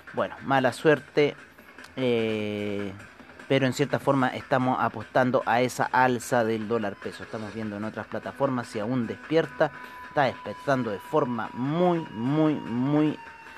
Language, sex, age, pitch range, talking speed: Spanish, male, 30-49, 110-135 Hz, 135 wpm